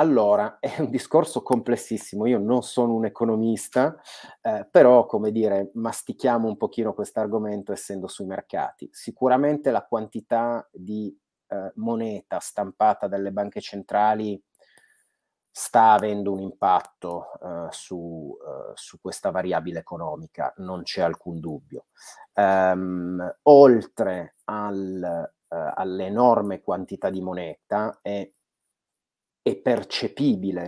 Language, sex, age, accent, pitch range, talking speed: Italian, male, 30-49, native, 100-120 Hz, 110 wpm